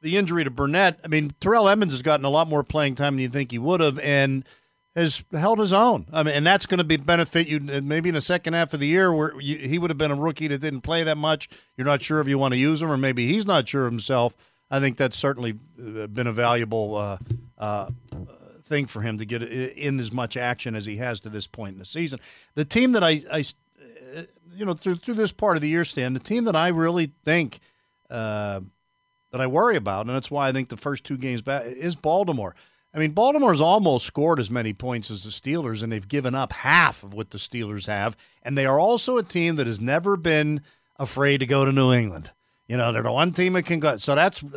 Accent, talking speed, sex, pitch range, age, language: American, 245 wpm, male, 120-160 Hz, 50-69, English